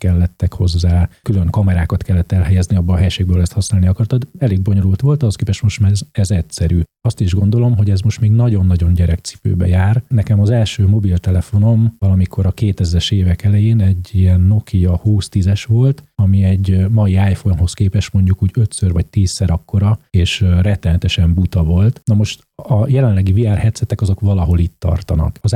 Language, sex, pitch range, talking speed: Hungarian, male, 90-105 Hz, 170 wpm